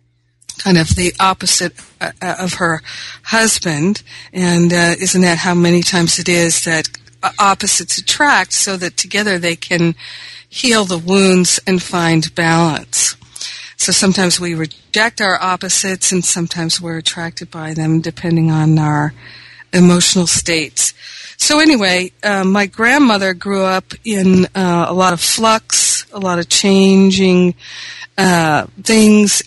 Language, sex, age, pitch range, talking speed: English, female, 50-69, 170-195 Hz, 135 wpm